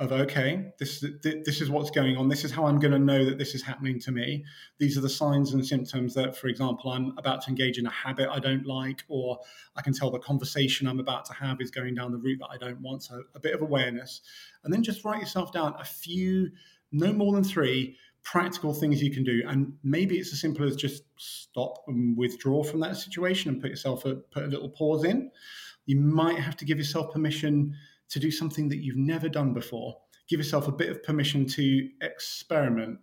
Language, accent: English, British